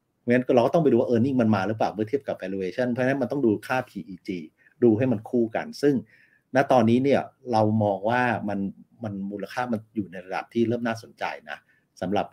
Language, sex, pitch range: Thai, male, 105-125 Hz